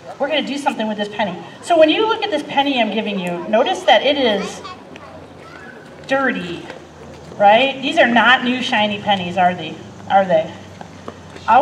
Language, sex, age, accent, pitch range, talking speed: English, female, 40-59, American, 200-280 Hz, 180 wpm